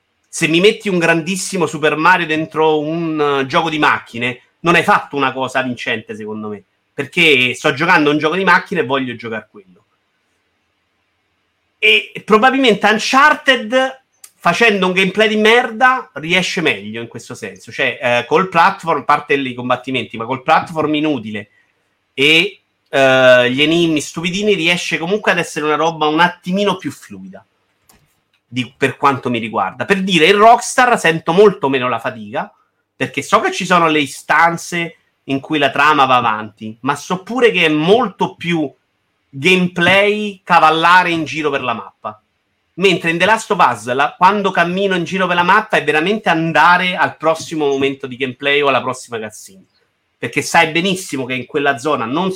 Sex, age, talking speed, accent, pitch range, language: male, 30-49, 170 wpm, native, 130-185 Hz, Italian